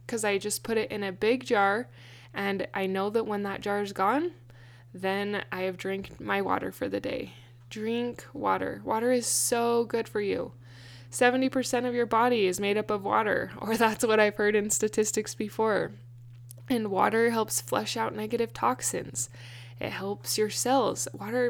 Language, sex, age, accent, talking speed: English, female, 10-29, American, 180 wpm